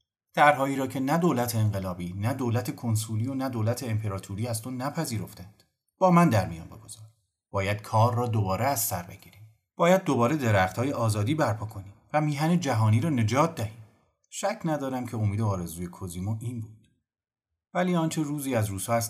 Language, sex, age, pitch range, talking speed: Persian, male, 40-59, 95-120 Hz, 175 wpm